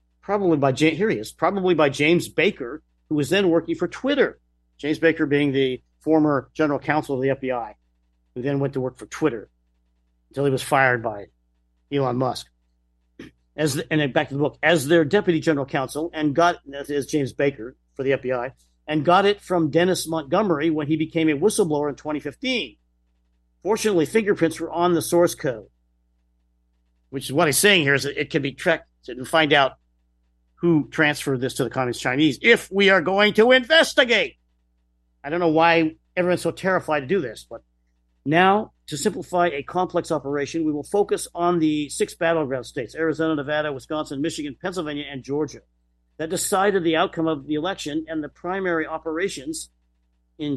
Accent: American